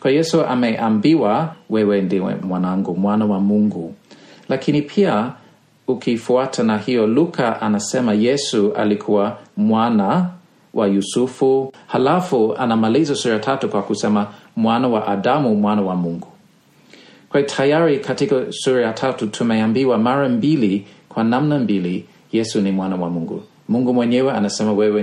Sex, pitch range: male, 100-125 Hz